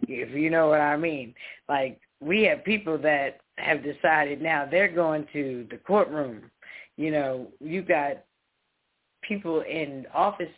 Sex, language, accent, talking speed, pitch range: female, English, American, 150 wpm, 150-180 Hz